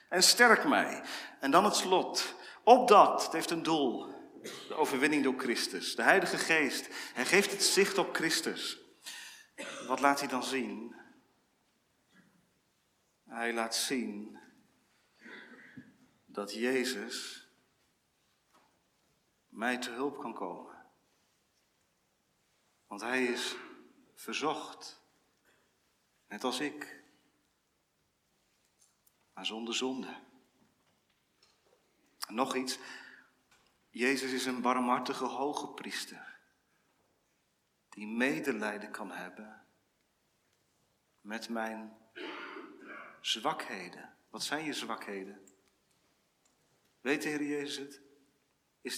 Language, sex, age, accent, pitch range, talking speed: Dutch, male, 40-59, Dutch, 120-145 Hz, 90 wpm